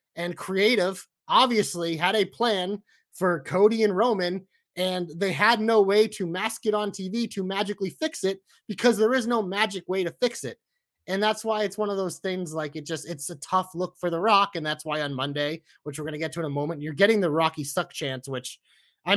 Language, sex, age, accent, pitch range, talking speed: English, male, 30-49, American, 175-240 Hz, 230 wpm